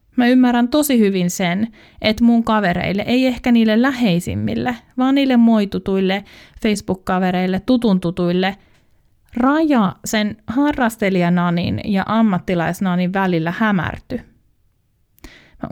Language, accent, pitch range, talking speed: Finnish, native, 190-240 Hz, 95 wpm